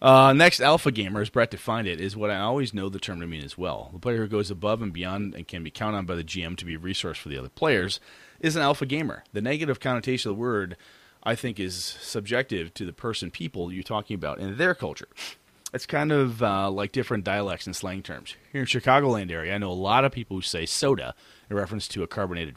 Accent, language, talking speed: American, English, 250 wpm